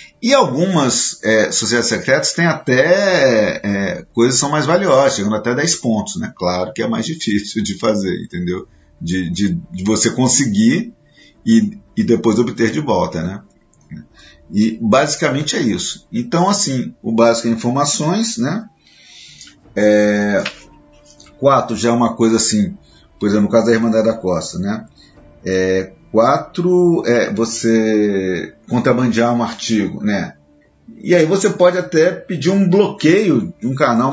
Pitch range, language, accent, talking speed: 110-180 Hz, Portuguese, Brazilian, 150 wpm